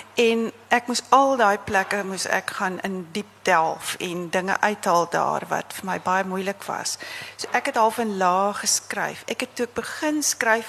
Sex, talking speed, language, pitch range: female, 190 wpm, Dutch, 195-260 Hz